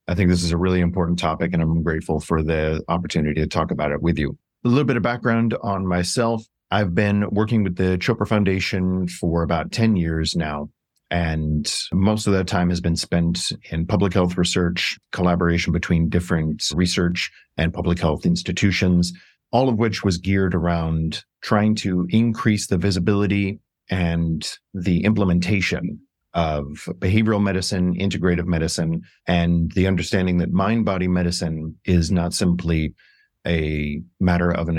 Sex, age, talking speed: male, 30-49, 155 wpm